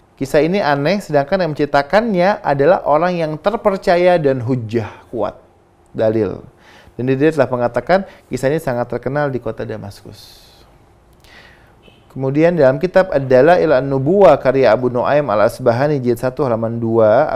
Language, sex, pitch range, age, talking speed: Indonesian, male, 110-145 Hz, 30-49, 140 wpm